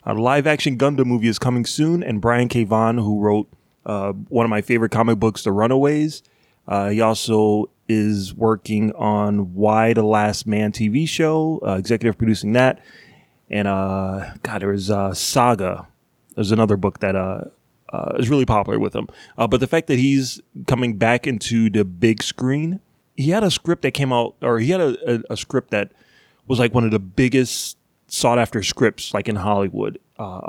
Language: English